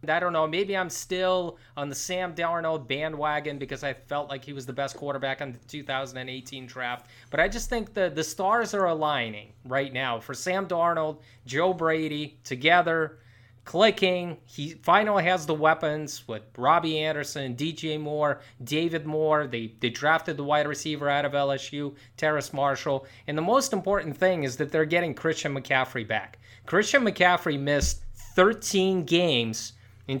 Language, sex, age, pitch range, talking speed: English, male, 30-49, 130-175 Hz, 165 wpm